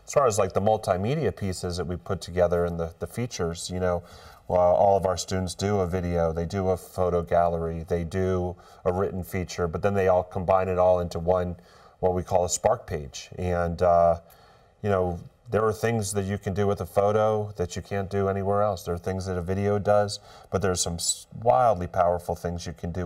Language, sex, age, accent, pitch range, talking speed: English, male, 30-49, American, 85-95 Hz, 225 wpm